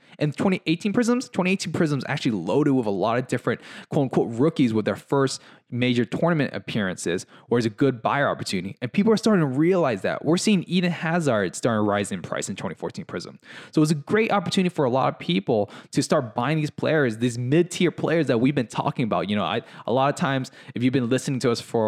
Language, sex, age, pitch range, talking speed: English, male, 20-39, 120-165 Hz, 230 wpm